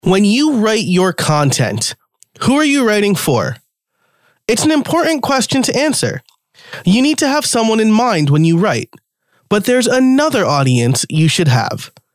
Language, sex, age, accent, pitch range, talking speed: English, male, 30-49, American, 140-210 Hz, 165 wpm